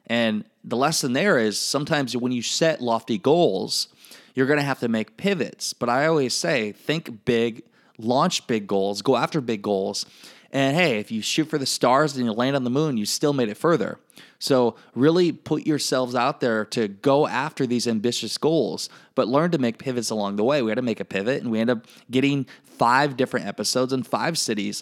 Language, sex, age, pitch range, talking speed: English, male, 20-39, 115-150 Hz, 210 wpm